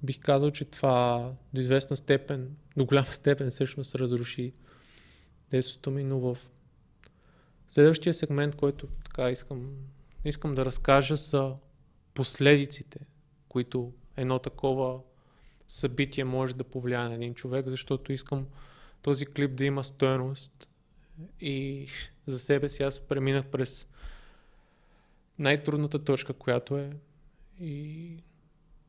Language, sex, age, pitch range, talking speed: Bulgarian, male, 20-39, 130-145 Hz, 115 wpm